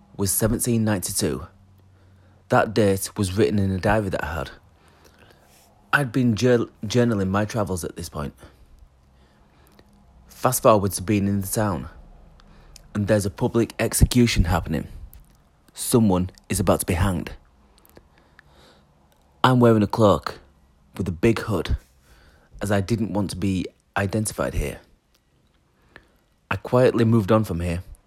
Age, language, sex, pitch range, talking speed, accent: 30-49, English, male, 85-110 Hz, 130 wpm, British